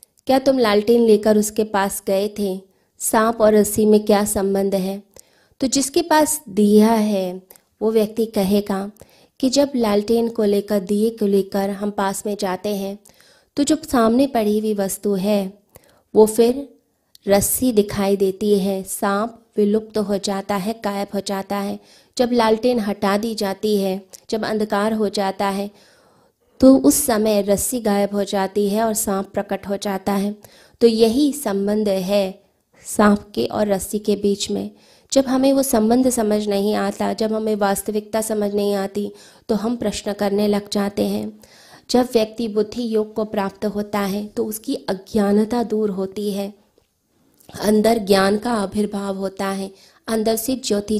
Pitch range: 200-225 Hz